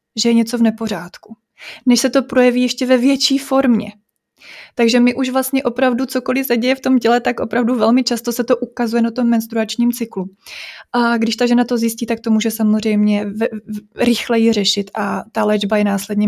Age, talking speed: 20-39, 200 wpm